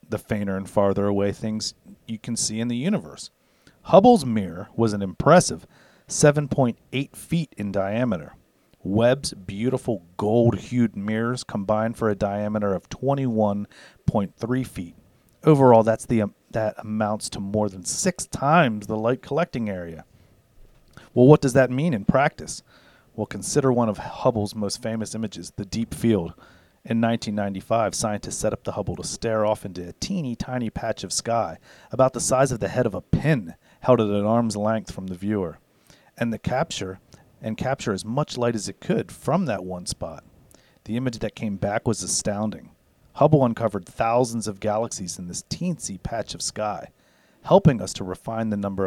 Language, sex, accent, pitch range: English, male, American, 100-125 Hz